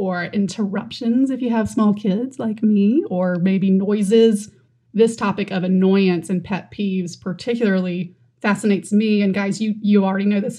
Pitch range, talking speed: 195-225 Hz, 165 wpm